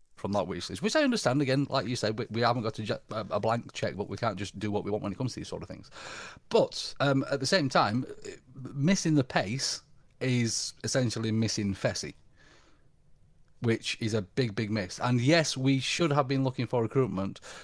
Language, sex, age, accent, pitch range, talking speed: English, male, 40-59, British, 110-140 Hz, 215 wpm